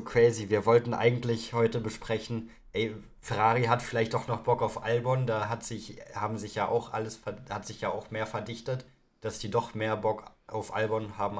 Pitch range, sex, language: 100-115 Hz, male, German